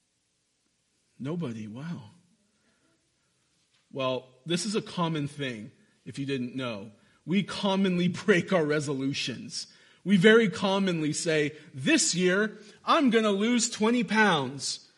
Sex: male